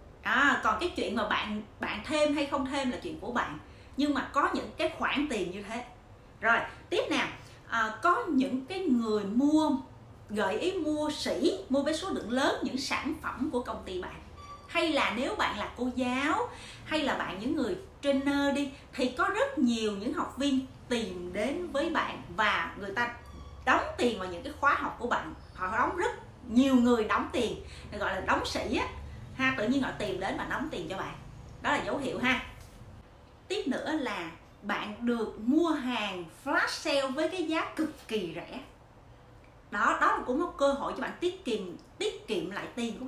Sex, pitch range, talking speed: female, 235-310 Hz, 200 wpm